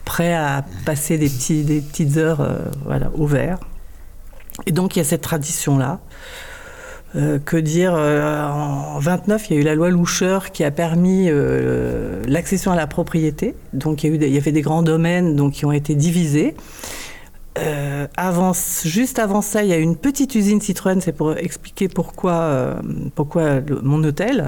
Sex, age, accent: female, 50-69, French